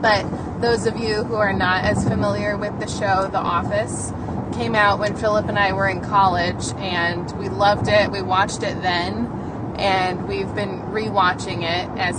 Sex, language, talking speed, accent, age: female, English, 180 wpm, American, 20-39